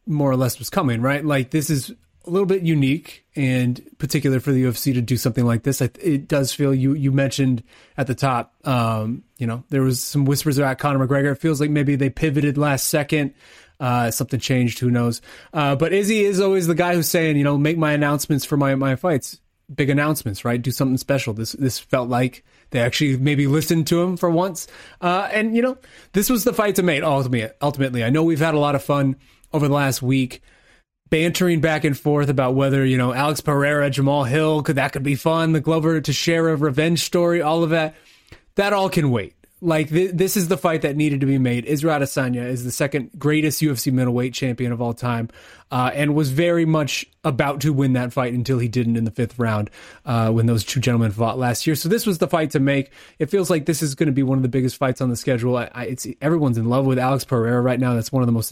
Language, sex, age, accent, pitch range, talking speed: English, male, 30-49, American, 125-160 Hz, 240 wpm